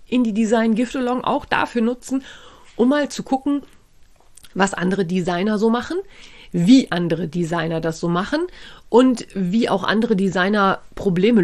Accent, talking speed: German, 150 wpm